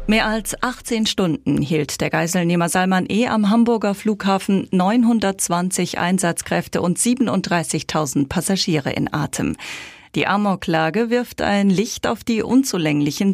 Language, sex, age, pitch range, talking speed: German, female, 40-59, 170-220 Hz, 120 wpm